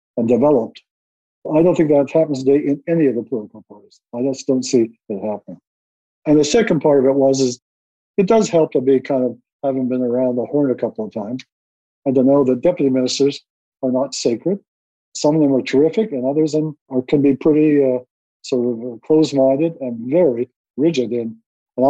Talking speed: 200 wpm